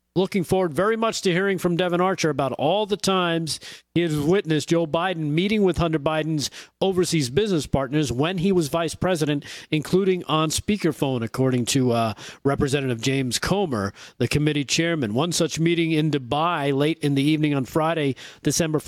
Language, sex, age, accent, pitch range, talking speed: English, male, 40-59, American, 145-180 Hz, 180 wpm